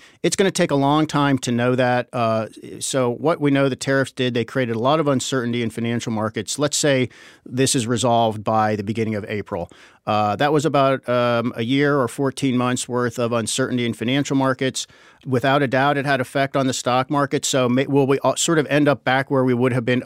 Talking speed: 225 wpm